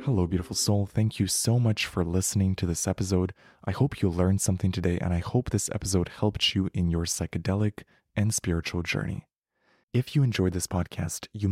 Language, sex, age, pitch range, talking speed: English, male, 20-39, 90-110 Hz, 195 wpm